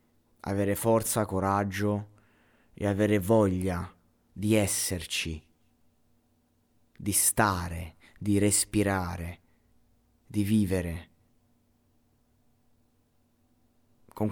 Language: Italian